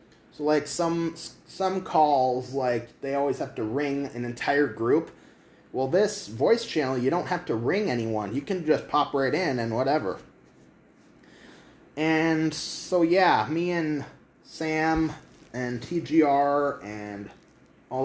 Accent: American